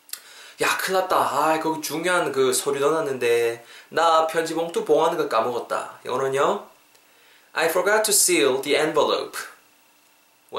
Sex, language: male, Korean